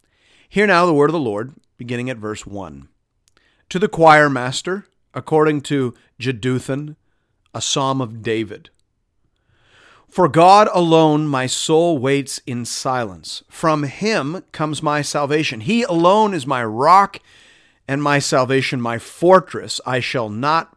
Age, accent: 40-59, American